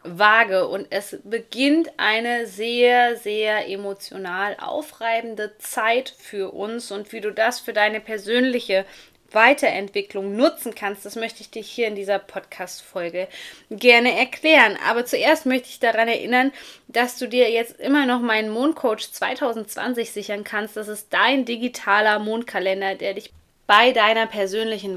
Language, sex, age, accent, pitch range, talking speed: German, female, 20-39, German, 205-245 Hz, 140 wpm